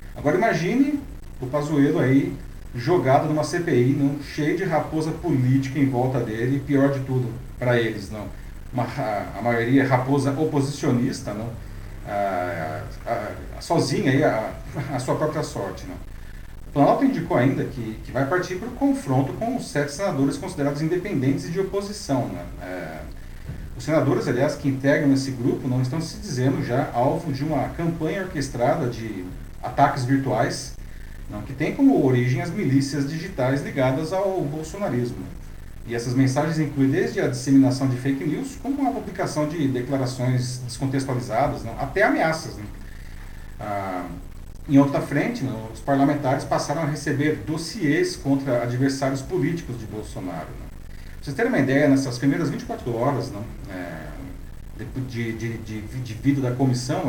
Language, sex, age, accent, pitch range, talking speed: Portuguese, male, 40-59, Brazilian, 115-150 Hz, 155 wpm